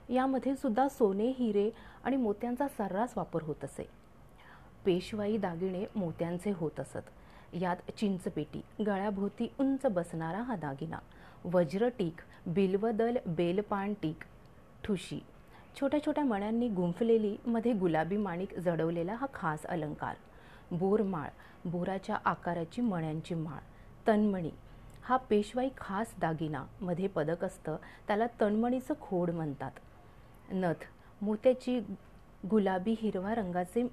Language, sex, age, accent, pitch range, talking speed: Marathi, female, 30-49, native, 175-230 Hz, 105 wpm